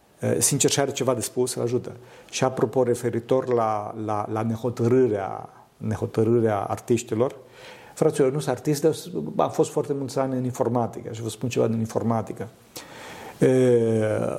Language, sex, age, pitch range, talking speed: Romanian, male, 50-69, 120-140 Hz, 140 wpm